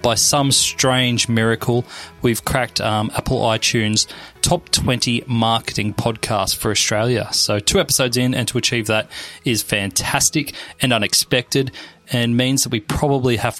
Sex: male